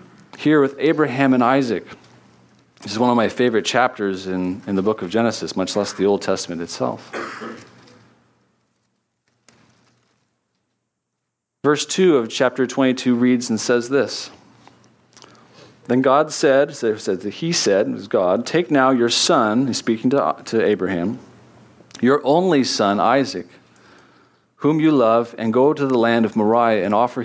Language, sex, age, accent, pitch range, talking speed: English, male, 40-59, American, 100-130 Hz, 145 wpm